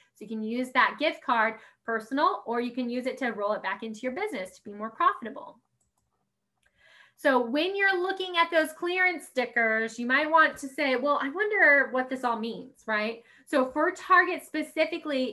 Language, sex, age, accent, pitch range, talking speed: English, female, 10-29, American, 235-315 Hz, 190 wpm